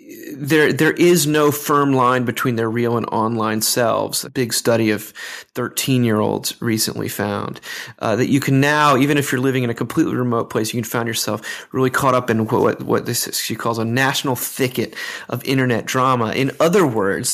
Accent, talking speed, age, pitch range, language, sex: American, 200 wpm, 30-49, 110-135 Hz, English, male